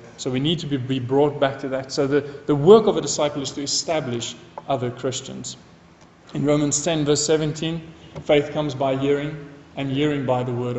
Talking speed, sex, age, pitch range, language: 195 wpm, male, 30-49, 130-160 Hz, English